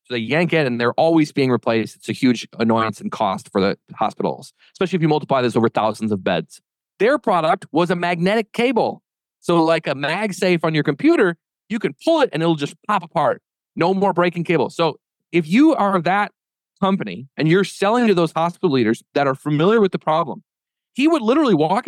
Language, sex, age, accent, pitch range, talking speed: English, male, 30-49, American, 140-200 Hz, 210 wpm